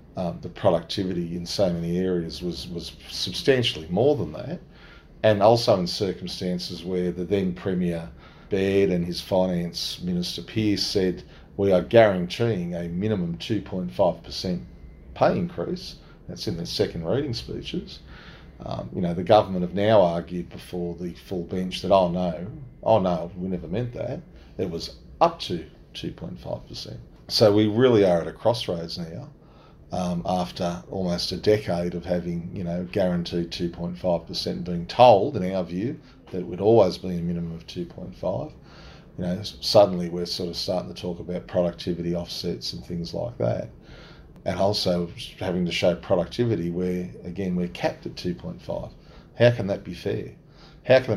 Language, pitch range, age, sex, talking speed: English, 85-95 Hz, 40-59, male, 160 wpm